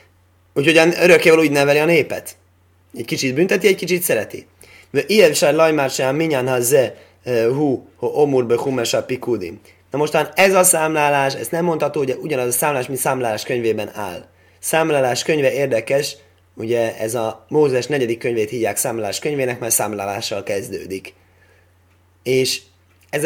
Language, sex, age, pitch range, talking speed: Hungarian, male, 20-39, 95-140 Hz, 140 wpm